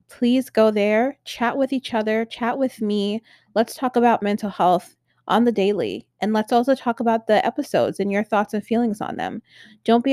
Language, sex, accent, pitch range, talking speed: English, female, American, 200-245 Hz, 200 wpm